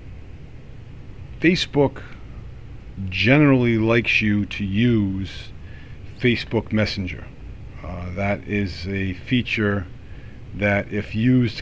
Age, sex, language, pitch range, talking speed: 50-69, male, English, 95-115 Hz, 85 wpm